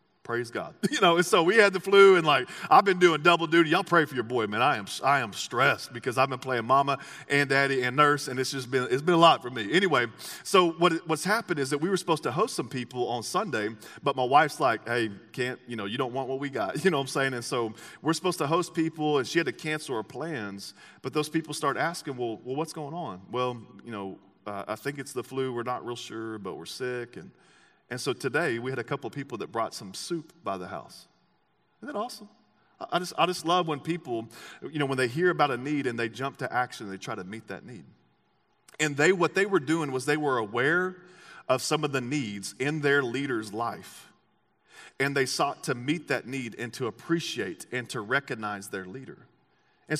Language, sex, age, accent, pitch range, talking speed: English, male, 40-59, American, 125-165 Hz, 245 wpm